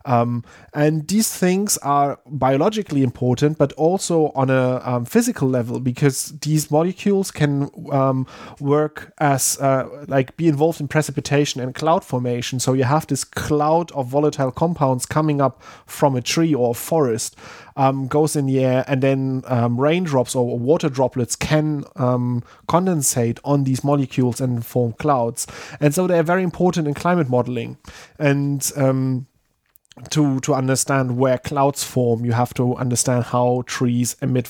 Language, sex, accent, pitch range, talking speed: English, male, German, 125-155 Hz, 155 wpm